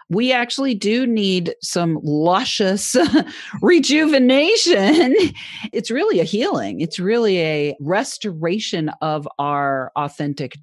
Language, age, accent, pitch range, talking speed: English, 40-59, American, 145-205 Hz, 100 wpm